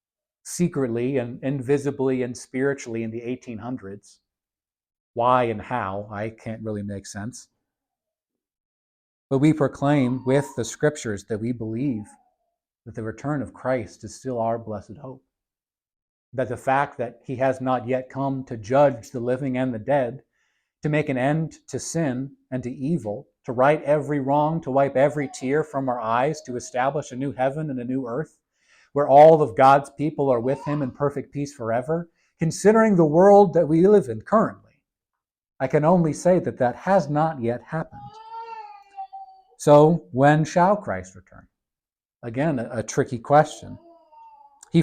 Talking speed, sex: 160 wpm, male